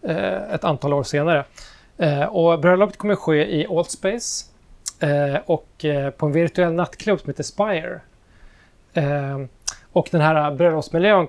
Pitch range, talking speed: 145-175 Hz, 120 wpm